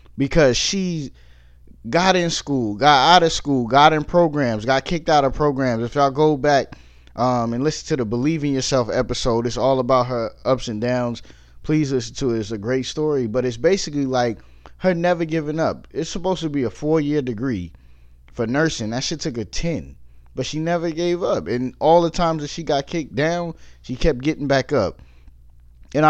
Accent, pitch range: American, 115-160 Hz